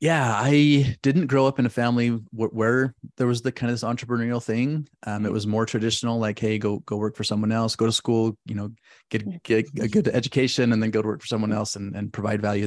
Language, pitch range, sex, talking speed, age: English, 105-120 Hz, male, 245 wpm, 30-49